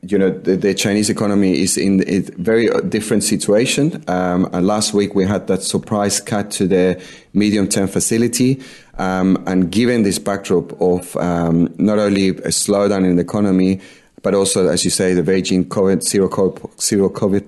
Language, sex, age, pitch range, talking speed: English, male, 30-49, 90-105 Hz, 180 wpm